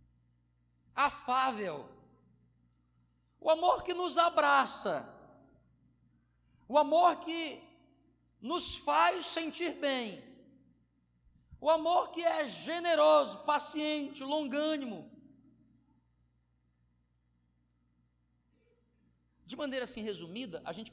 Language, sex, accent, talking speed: Portuguese, male, Brazilian, 75 wpm